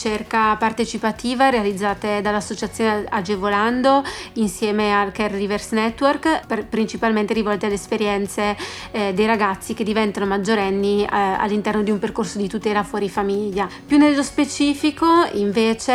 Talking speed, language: 125 wpm, Italian